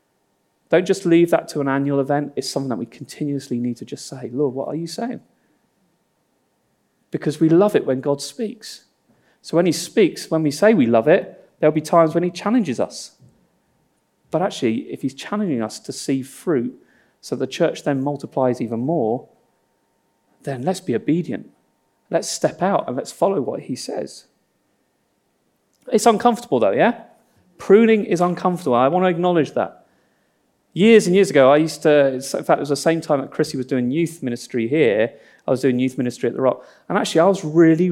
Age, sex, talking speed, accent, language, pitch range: 30-49, male, 190 wpm, British, English, 140-185 Hz